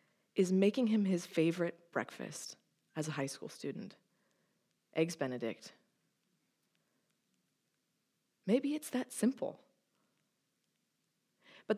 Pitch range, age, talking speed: 155-205 Hz, 30-49, 90 wpm